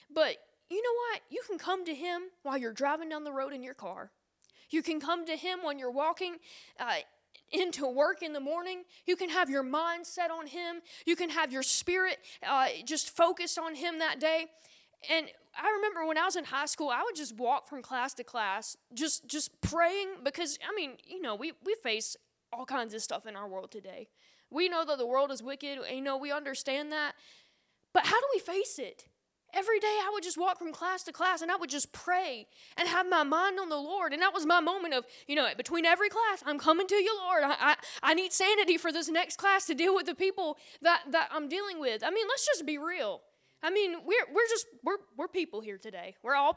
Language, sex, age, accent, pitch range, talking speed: English, female, 20-39, American, 285-360 Hz, 235 wpm